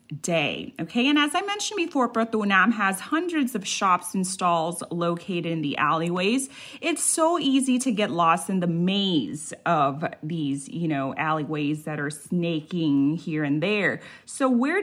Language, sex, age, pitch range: Thai, female, 30-49, 170-235 Hz